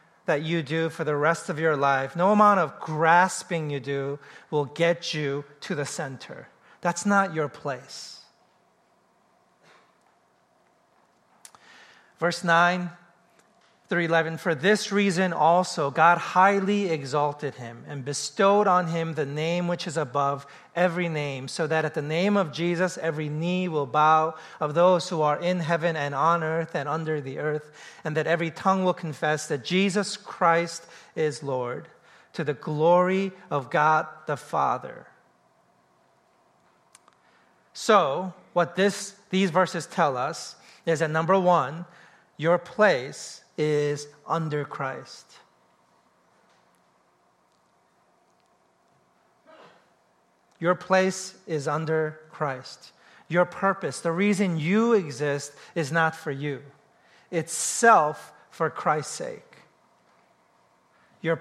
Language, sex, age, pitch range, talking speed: English, male, 40-59, 150-180 Hz, 120 wpm